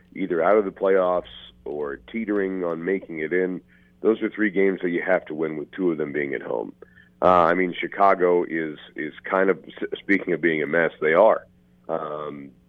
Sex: male